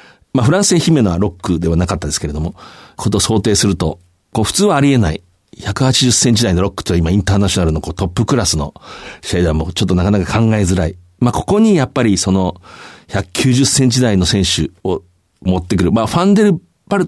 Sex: male